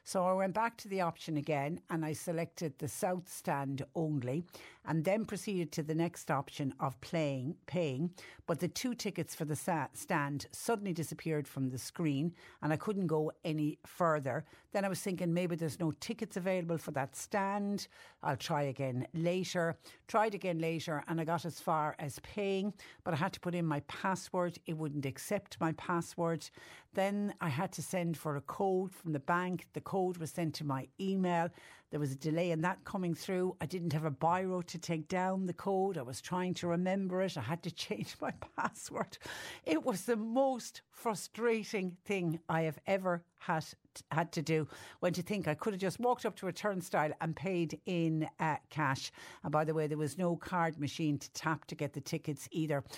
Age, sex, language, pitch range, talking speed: 60-79, female, English, 155-185 Hz, 200 wpm